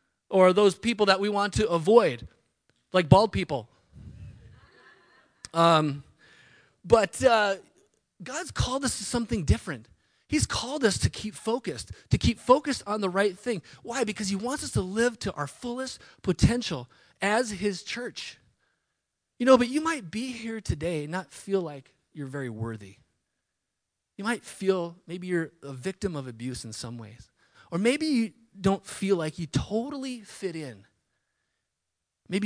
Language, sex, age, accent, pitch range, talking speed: English, male, 30-49, American, 135-210 Hz, 155 wpm